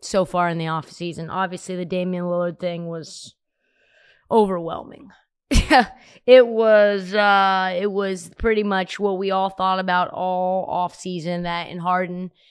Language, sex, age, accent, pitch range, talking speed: English, female, 20-39, American, 190-270 Hz, 145 wpm